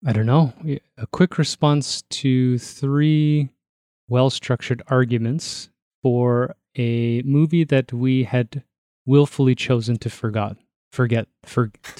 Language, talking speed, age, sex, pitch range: English, 115 wpm, 30-49, male, 115-140 Hz